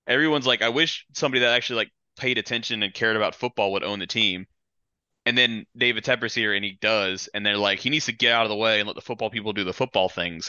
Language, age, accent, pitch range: English, 20-39, American, 100-125 Hz